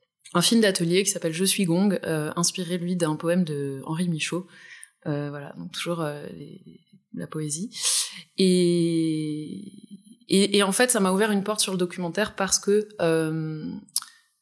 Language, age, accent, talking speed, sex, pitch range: French, 20-39, French, 165 wpm, female, 160-195 Hz